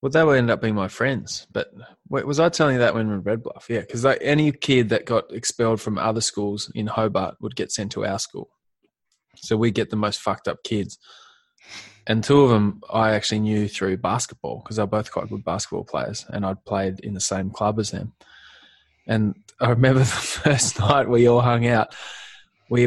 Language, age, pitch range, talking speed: English, 20-39, 110-135 Hz, 215 wpm